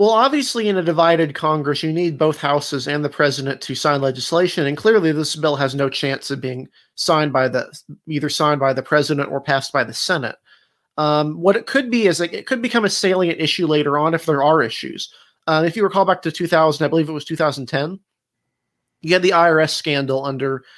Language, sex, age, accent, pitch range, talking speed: English, male, 30-49, American, 140-165 Hz, 215 wpm